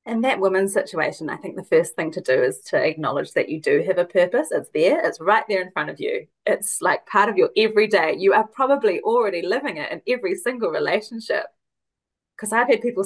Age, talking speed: 30-49, 225 wpm